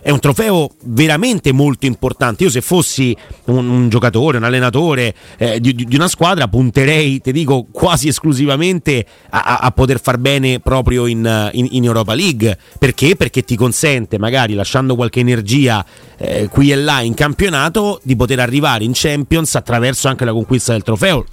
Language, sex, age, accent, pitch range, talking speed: Italian, male, 30-49, native, 115-145 Hz, 170 wpm